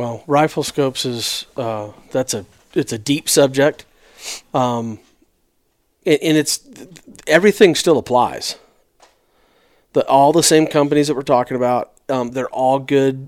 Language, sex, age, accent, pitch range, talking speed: English, male, 40-59, American, 115-135 Hz, 135 wpm